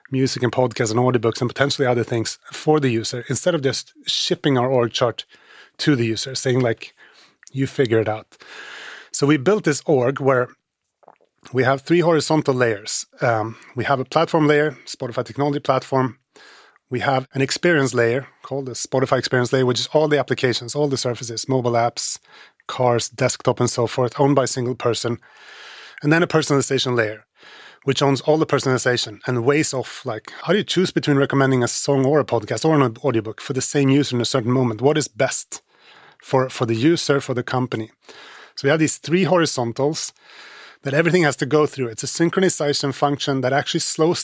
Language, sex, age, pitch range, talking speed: English, male, 30-49, 125-150 Hz, 195 wpm